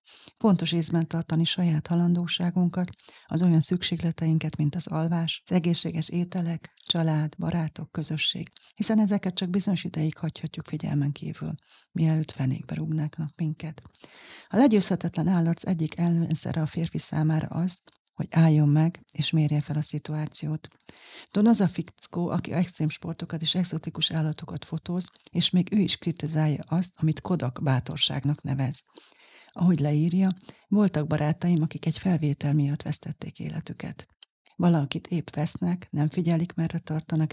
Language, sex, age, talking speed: Hungarian, female, 40-59, 135 wpm